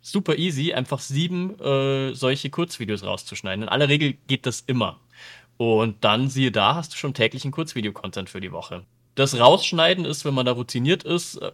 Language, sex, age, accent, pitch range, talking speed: German, male, 30-49, German, 120-145 Hz, 175 wpm